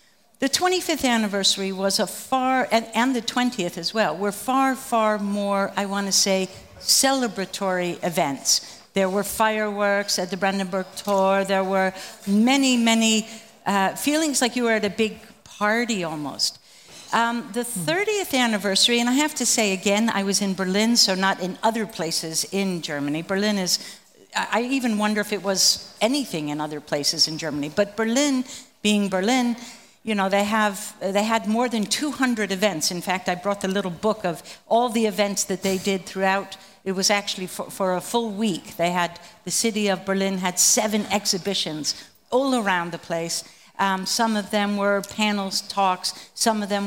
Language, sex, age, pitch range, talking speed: Finnish, female, 60-79, 195-235 Hz, 180 wpm